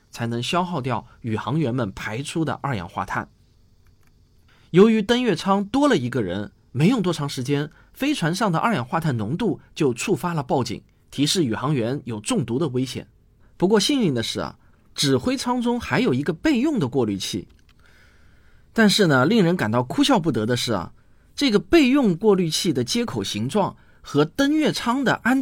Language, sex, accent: Chinese, male, native